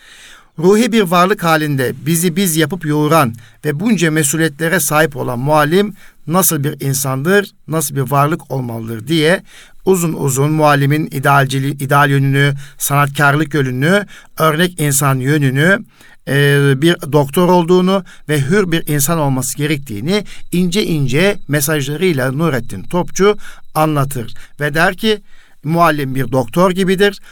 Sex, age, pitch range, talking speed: male, 60-79, 135-180 Hz, 125 wpm